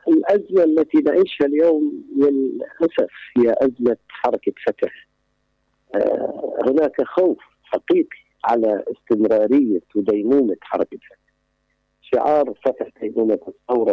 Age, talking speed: 50-69, 95 wpm